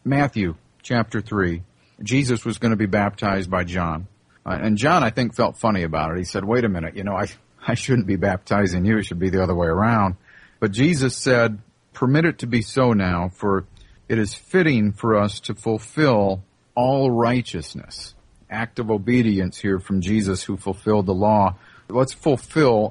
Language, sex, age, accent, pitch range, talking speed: English, male, 50-69, American, 95-125 Hz, 185 wpm